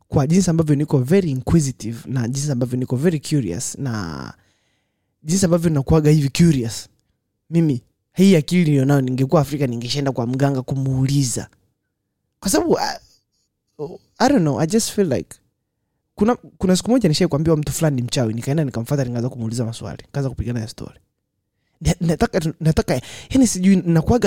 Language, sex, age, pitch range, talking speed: Swahili, male, 20-39, 115-160 Hz, 150 wpm